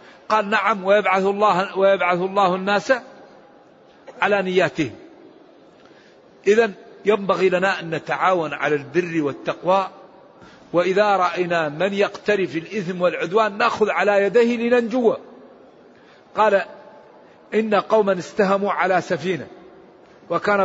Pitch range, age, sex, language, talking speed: 185-220 Hz, 50-69, male, English, 95 wpm